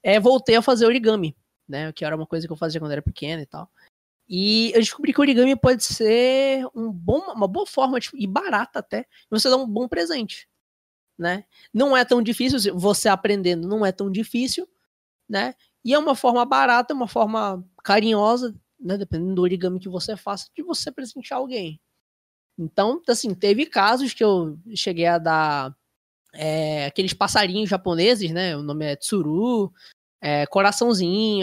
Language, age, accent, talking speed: Portuguese, 20-39, Brazilian, 170 wpm